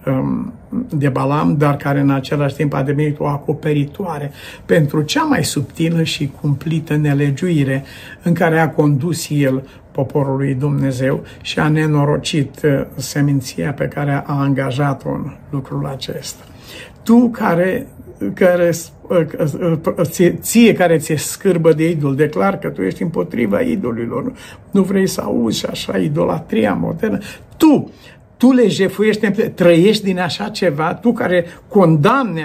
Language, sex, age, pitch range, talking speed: Romanian, male, 50-69, 140-180 Hz, 130 wpm